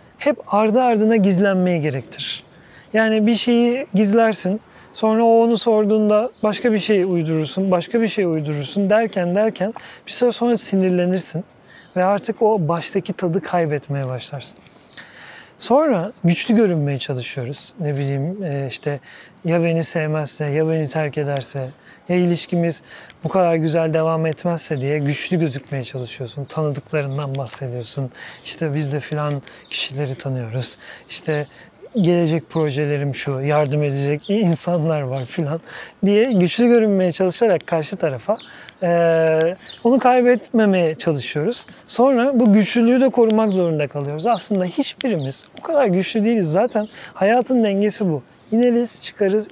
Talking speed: 125 wpm